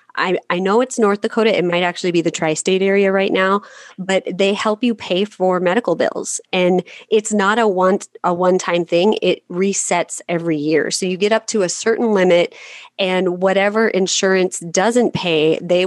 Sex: female